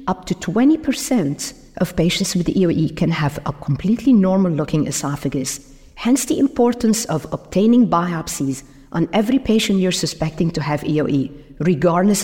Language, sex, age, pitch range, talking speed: English, female, 50-69, 145-205 Hz, 135 wpm